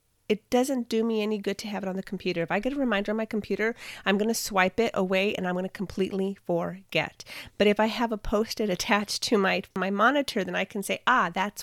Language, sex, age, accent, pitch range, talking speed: English, female, 30-49, American, 190-220 Hz, 240 wpm